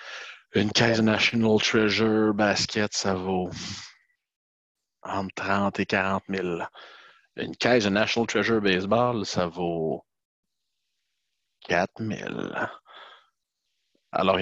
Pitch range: 95-125 Hz